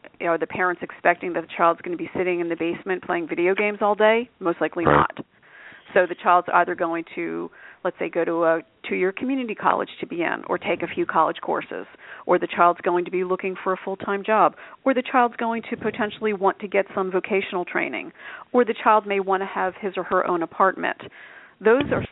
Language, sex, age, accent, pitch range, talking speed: English, female, 40-59, American, 180-210 Hz, 220 wpm